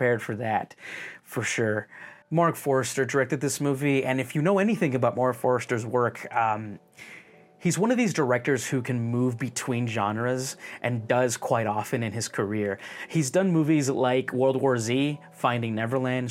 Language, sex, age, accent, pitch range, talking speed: English, male, 30-49, American, 115-140 Hz, 165 wpm